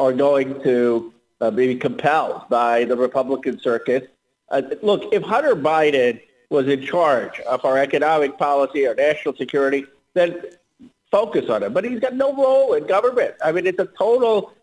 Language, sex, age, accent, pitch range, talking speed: English, male, 50-69, American, 135-195 Hz, 165 wpm